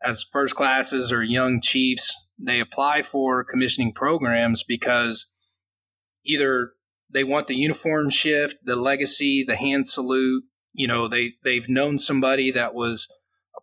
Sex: male